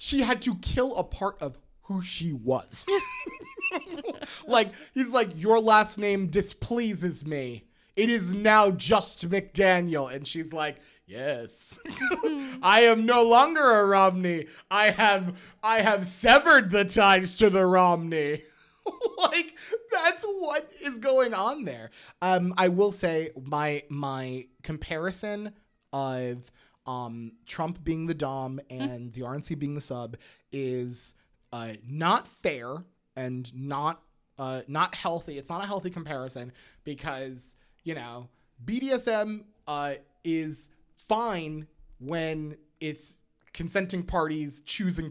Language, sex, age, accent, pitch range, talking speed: English, male, 30-49, American, 145-215 Hz, 125 wpm